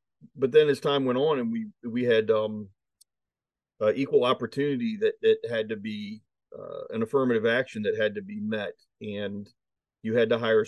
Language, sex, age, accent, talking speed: English, male, 40-59, American, 185 wpm